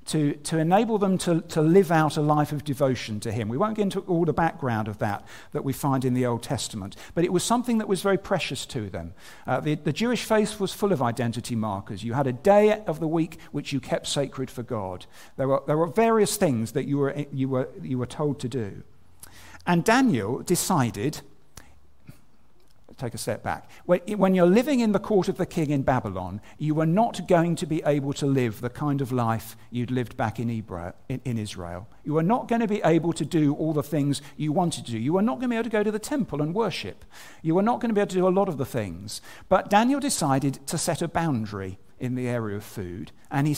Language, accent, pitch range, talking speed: English, British, 125-180 Hz, 235 wpm